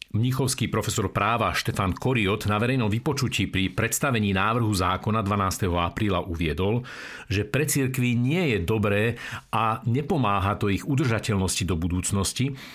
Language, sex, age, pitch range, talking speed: Slovak, male, 50-69, 100-130 Hz, 130 wpm